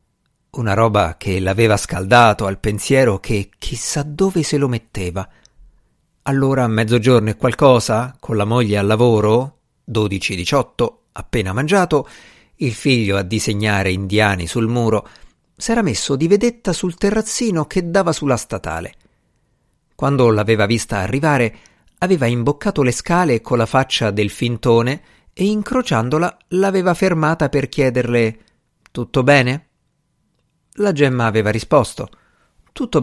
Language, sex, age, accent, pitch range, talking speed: Italian, male, 50-69, native, 110-150 Hz, 125 wpm